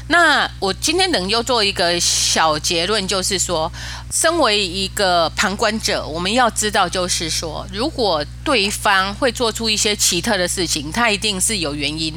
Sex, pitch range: female, 155-220 Hz